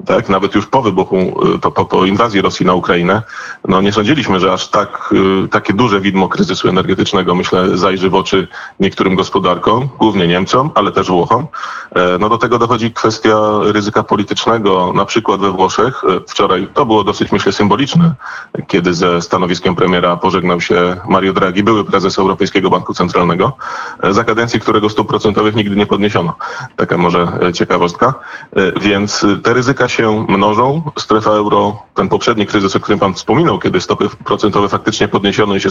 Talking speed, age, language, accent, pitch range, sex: 160 wpm, 30-49, Polish, native, 95-110 Hz, male